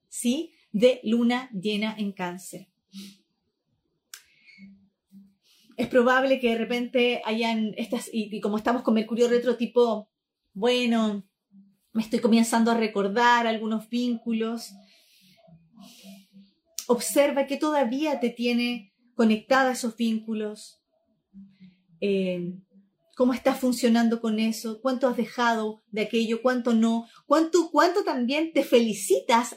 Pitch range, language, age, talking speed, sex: 220-280 Hz, Spanish, 30-49, 110 wpm, female